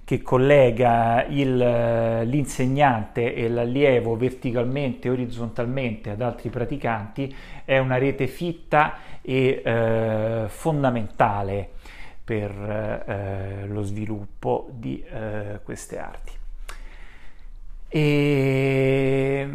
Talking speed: 85 wpm